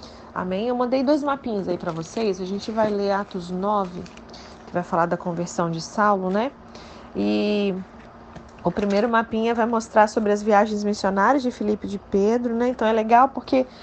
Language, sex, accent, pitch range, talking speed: Portuguese, female, Brazilian, 200-250 Hz, 180 wpm